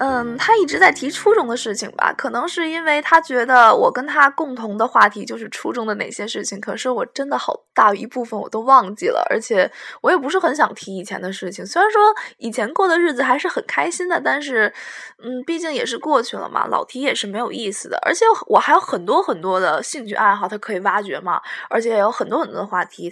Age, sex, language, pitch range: 20-39, female, Chinese, 210-335 Hz